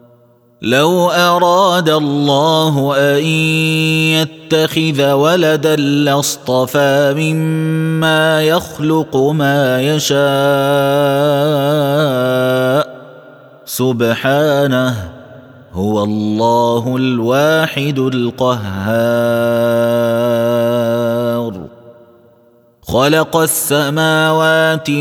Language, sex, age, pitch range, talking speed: Arabic, male, 30-49, 125-155 Hz, 45 wpm